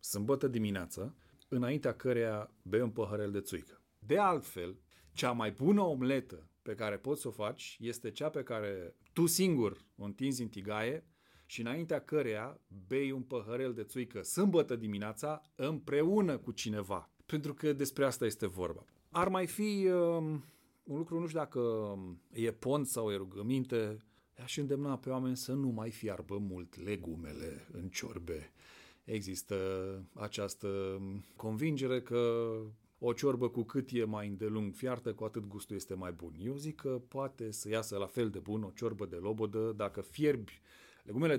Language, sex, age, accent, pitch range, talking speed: Romanian, male, 40-59, native, 100-130 Hz, 160 wpm